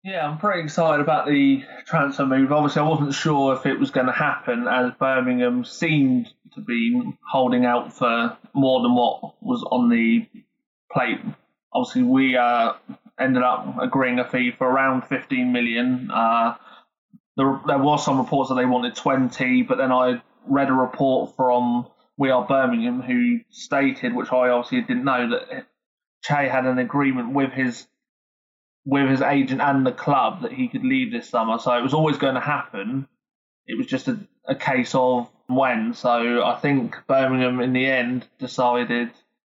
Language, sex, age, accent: English, male, 20-39, British